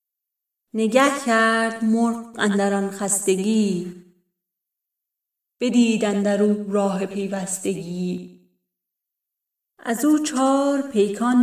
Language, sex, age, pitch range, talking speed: Persian, female, 30-49, 195-230 Hz, 75 wpm